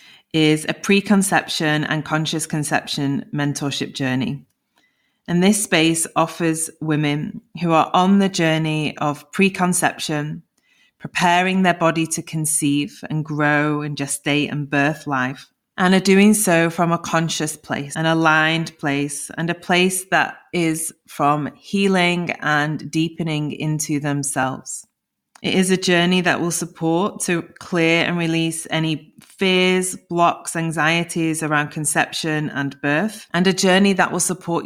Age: 30-49